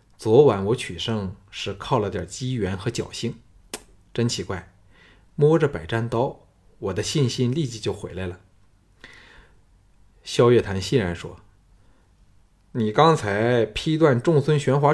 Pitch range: 95-125 Hz